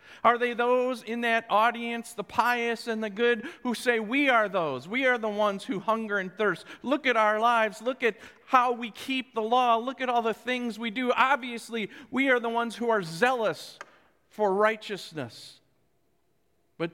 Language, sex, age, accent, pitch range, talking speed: English, male, 50-69, American, 205-245 Hz, 190 wpm